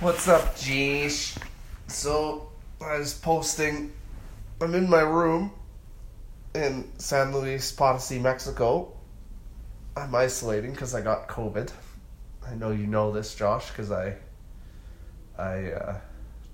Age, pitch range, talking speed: 20-39, 95-120 Hz, 115 wpm